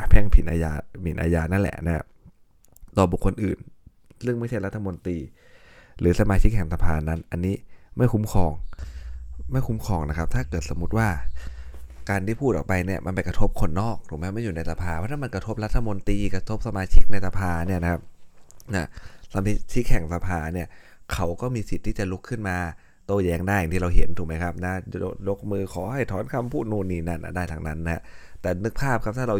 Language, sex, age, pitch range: Thai, male, 20-39, 85-100 Hz